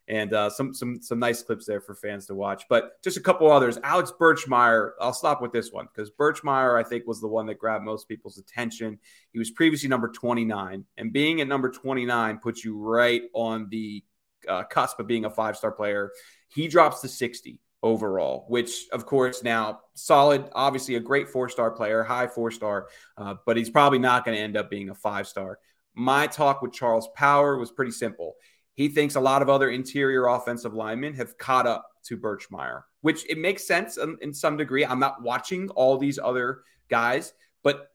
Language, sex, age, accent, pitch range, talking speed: English, male, 30-49, American, 110-140 Hz, 205 wpm